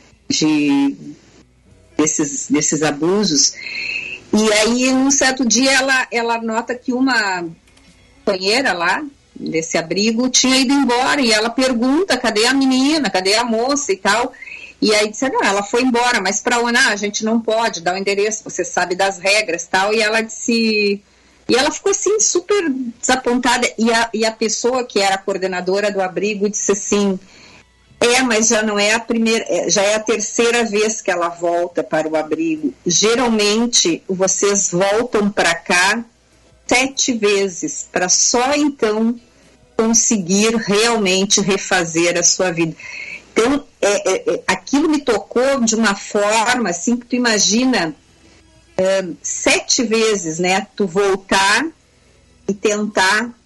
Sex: female